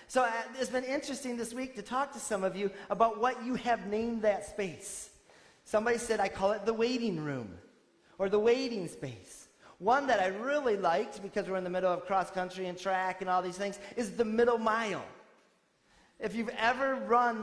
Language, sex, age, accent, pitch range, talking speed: English, male, 30-49, American, 185-235 Hz, 200 wpm